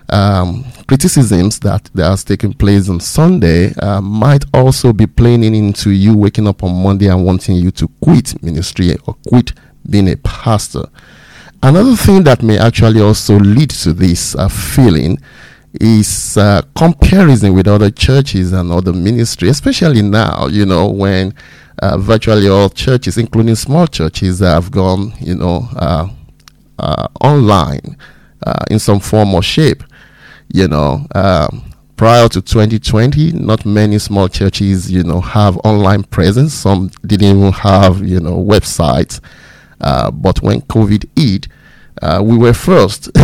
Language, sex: English, male